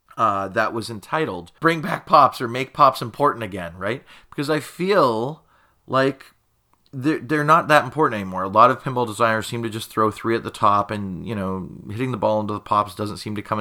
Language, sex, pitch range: English, male, 105-135 Hz